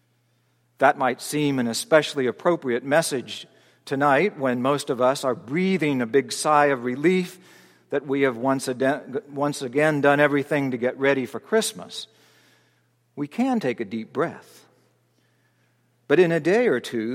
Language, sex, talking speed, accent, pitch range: English, male, 150 wpm, American, 125-170 Hz